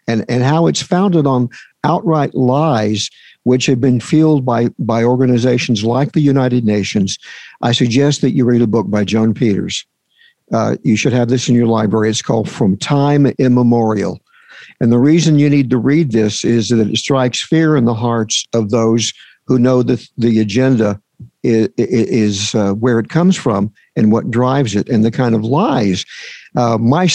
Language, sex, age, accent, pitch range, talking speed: English, male, 50-69, American, 115-145 Hz, 185 wpm